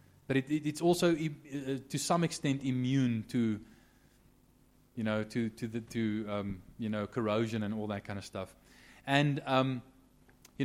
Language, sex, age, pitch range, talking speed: English, male, 20-39, 105-135 Hz, 170 wpm